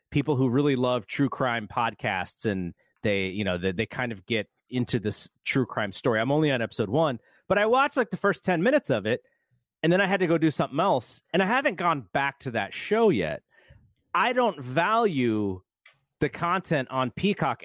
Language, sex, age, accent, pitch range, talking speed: English, male, 30-49, American, 115-165 Hz, 205 wpm